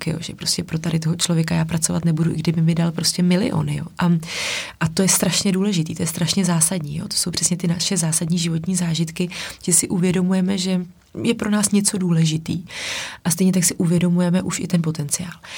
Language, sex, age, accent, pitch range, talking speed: Czech, female, 30-49, native, 165-195 Hz, 205 wpm